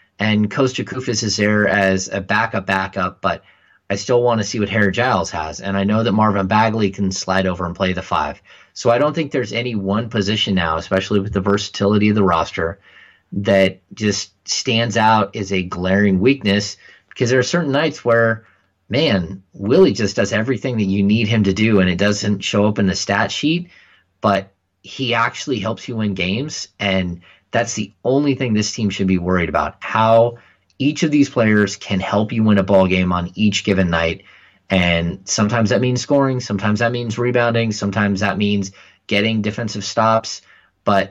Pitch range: 95-110 Hz